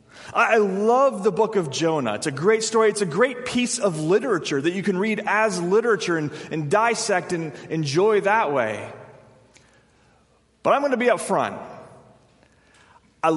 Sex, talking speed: male, 165 wpm